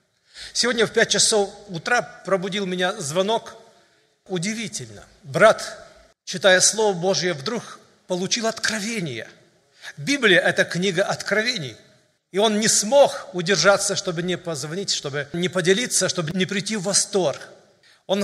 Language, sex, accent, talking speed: Russian, male, native, 120 wpm